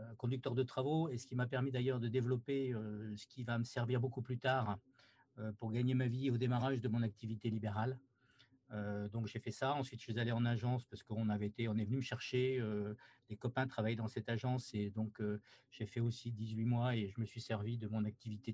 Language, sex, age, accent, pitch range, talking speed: French, male, 50-69, French, 105-125 Hz, 240 wpm